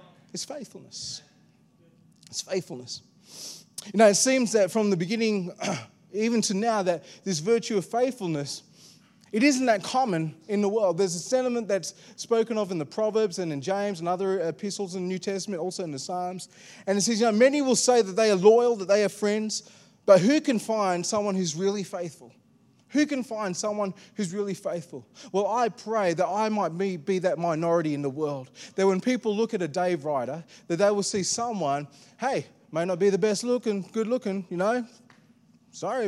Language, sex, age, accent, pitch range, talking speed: English, male, 20-39, Australian, 170-215 Hz, 200 wpm